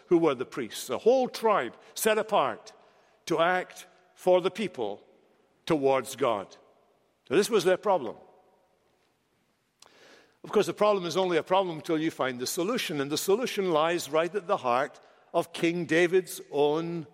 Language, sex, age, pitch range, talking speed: English, male, 60-79, 170-215 Hz, 160 wpm